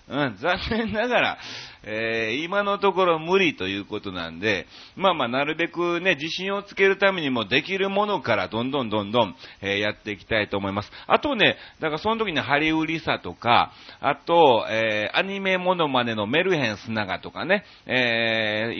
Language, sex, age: Japanese, male, 40-59